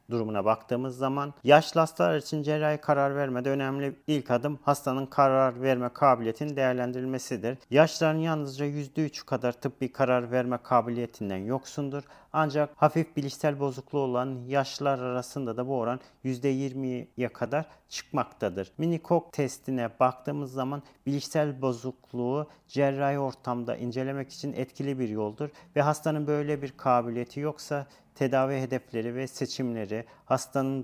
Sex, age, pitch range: male, 40-59, 125-140 Hz